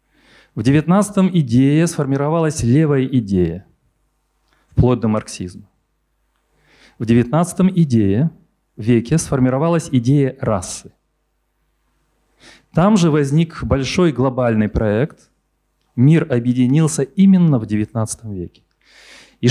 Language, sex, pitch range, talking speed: Ukrainian, male, 120-170 Hz, 85 wpm